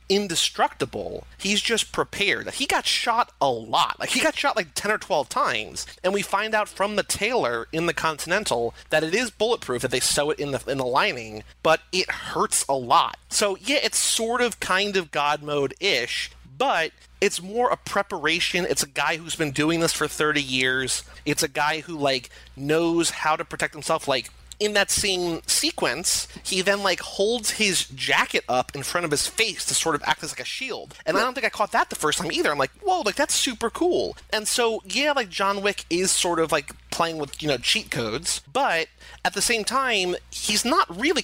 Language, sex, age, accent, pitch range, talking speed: English, male, 30-49, American, 155-220 Hz, 215 wpm